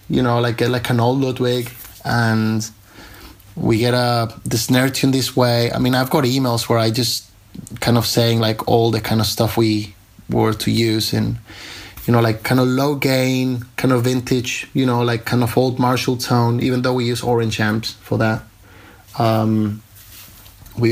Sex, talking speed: male, 190 wpm